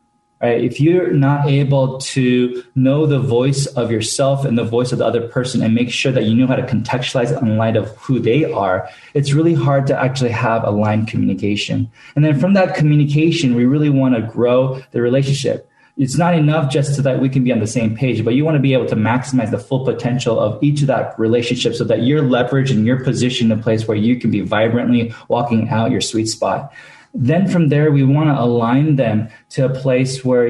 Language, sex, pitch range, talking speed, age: English, male, 120-145 Hz, 220 wpm, 20-39